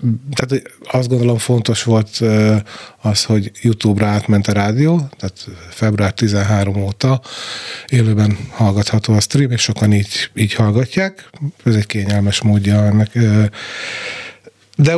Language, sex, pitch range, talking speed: Hungarian, male, 105-135 Hz, 115 wpm